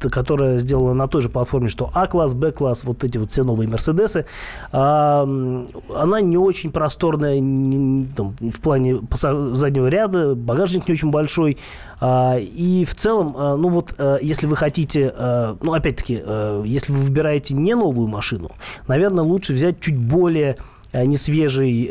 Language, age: Russian, 20-39